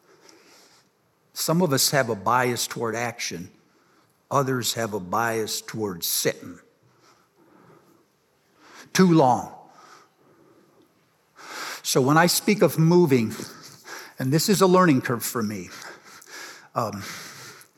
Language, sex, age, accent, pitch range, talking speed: English, male, 60-79, American, 120-165 Hz, 105 wpm